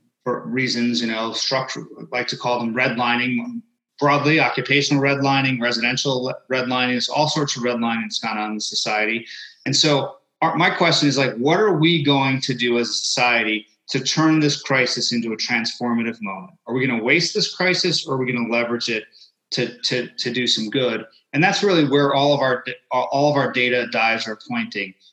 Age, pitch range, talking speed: 30-49, 120-145 Hz, 200 wpm